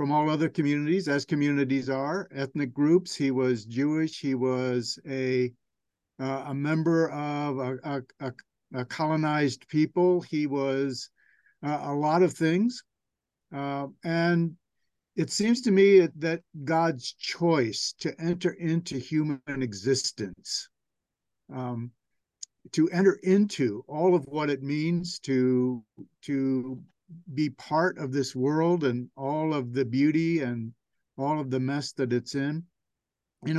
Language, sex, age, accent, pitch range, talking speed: English, male, 60-79, American, 130-160 Hz, 135 wpm